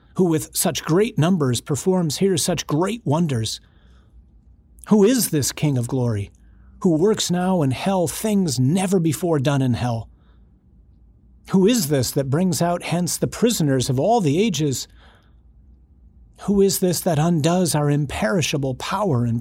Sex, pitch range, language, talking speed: male, 105-170 Hz, English, 150 wpm